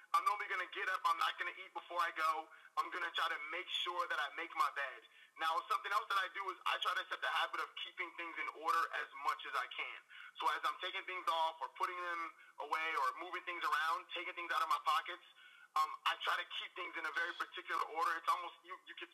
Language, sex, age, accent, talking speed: English, male, 30-49, American, 255 wpm